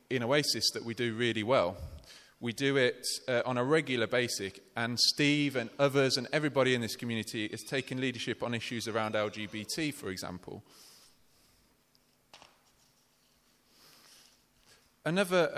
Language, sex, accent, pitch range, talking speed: English, male, British, 110-135 Hz, 130 wpm